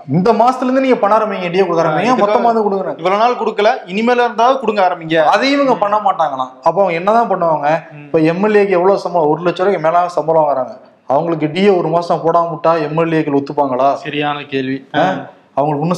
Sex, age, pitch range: male, 20-39, 150-195 Hz